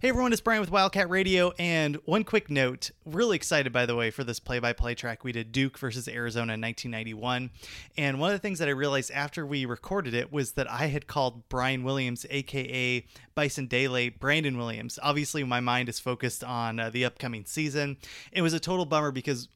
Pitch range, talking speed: 120-150 Hz, 205 wpm